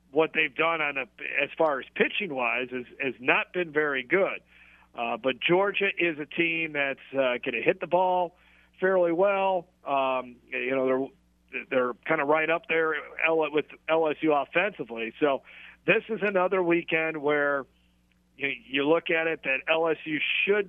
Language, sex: English, male